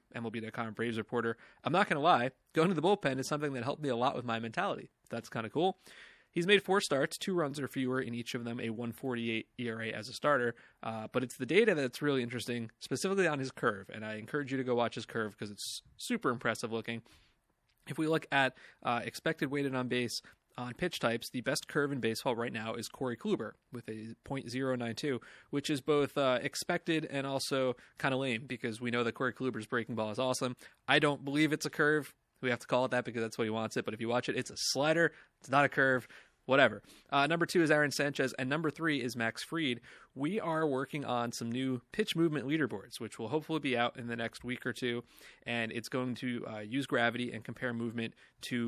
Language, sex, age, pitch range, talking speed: English, male, 30-49, 115-145 Hz, 235 wpm